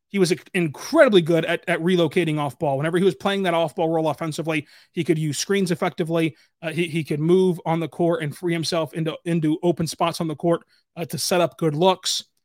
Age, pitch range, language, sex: 30-49, 165-195 Hz, English, male